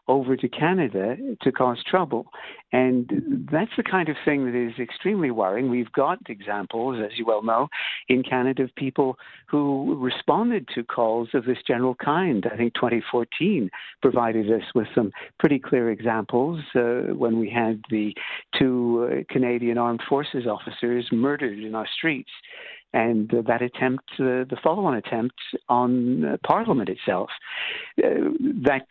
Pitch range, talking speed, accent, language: 115-135 Hz, 155 wpm, American, English